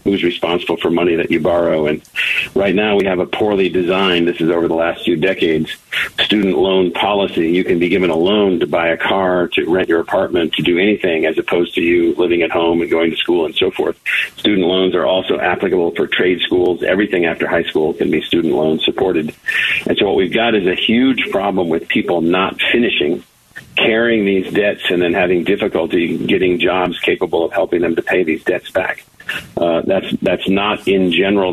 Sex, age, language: male, 50-69, English